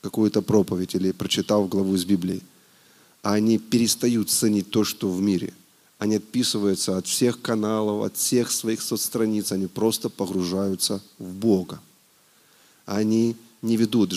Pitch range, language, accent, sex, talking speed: 95-110 Hz, Russian, native, male, 130 wpm